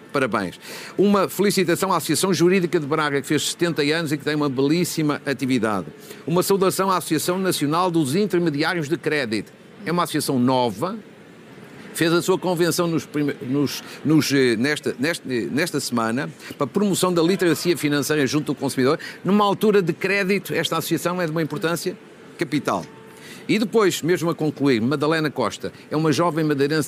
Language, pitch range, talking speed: Portuguese, 130-175 Hz, 165 wpm